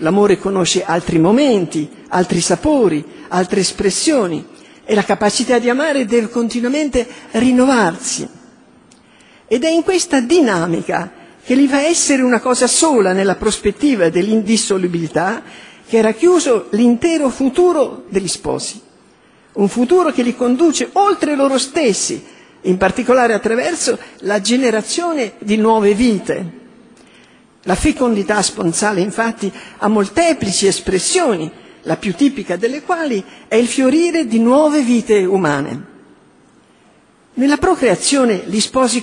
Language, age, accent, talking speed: Italian, 50-69, native, 120 wpm